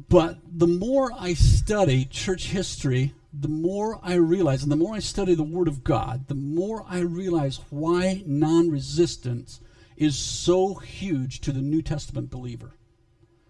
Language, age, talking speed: English, 50-69, 150 wpm